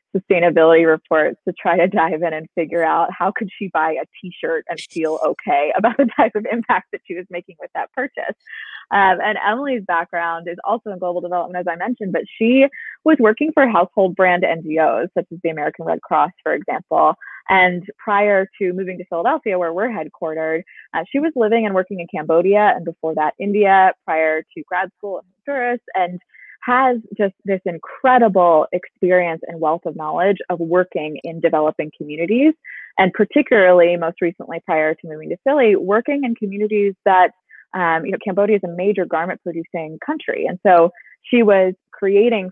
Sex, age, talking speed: female, 20-39, 180 wpm